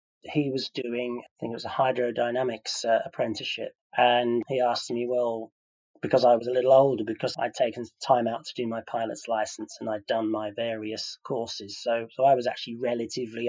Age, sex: 30-49, male